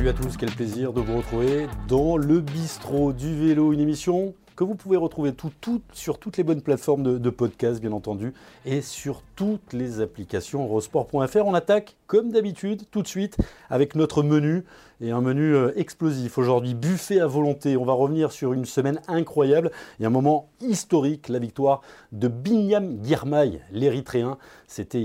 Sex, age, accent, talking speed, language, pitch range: male, 30-49, French, 175 wpm, French, 130-185 Hz